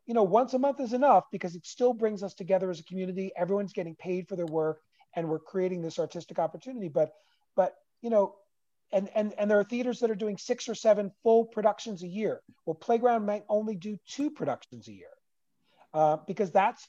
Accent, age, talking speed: American, 40-59, 215 wpm